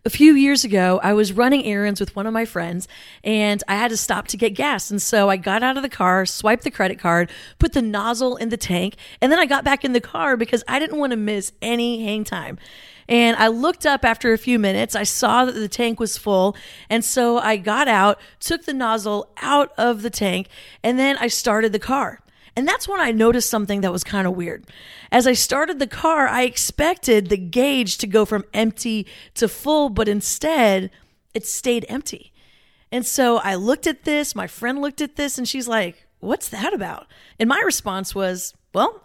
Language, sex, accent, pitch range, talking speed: English, female, American, 205-265 Hz, 220 wpm